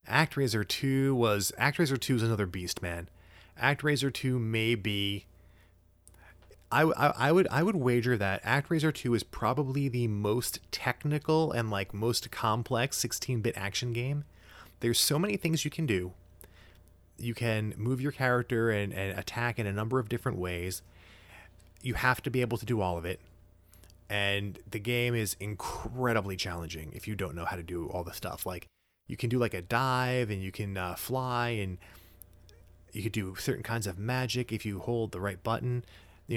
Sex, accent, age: male, American, 30-49